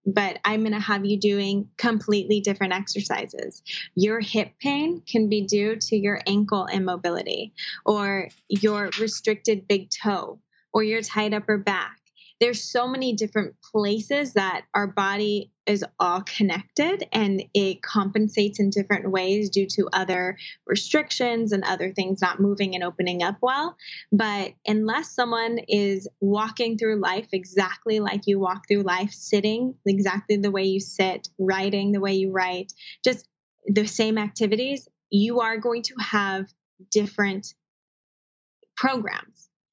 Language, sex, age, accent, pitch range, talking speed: English, female, 20-39, American, 195-220 Hz, 145 wpm